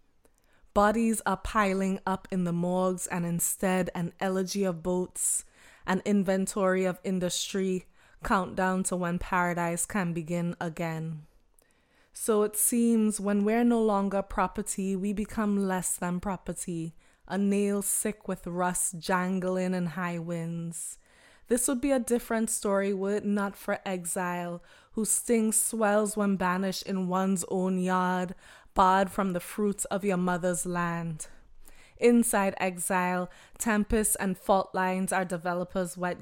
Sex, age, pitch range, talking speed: female, 20-39, 180-210 Hz, 140 wpm